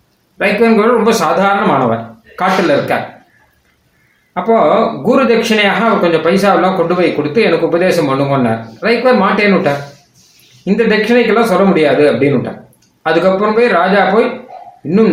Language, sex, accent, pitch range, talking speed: Tamil, male, native, 170-230 Hz, 125 wpm